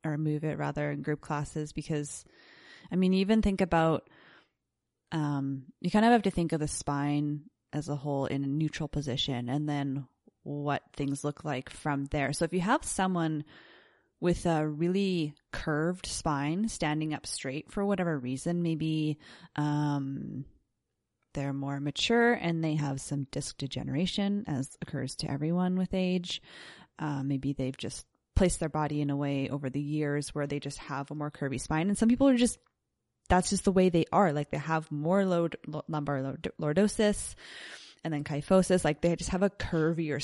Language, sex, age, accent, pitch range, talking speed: English, female, 20-39, American, 145-175 Hz, 175 wpm